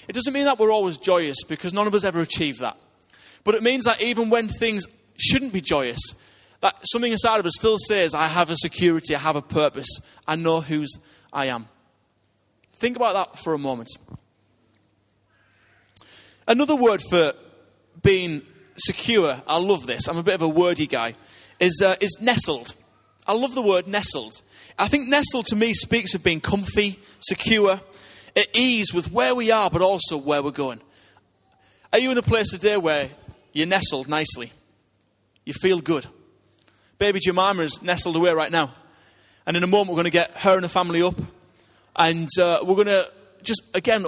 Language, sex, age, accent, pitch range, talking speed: English, male, 20-39, British, 135-200 Hz, 185 wpm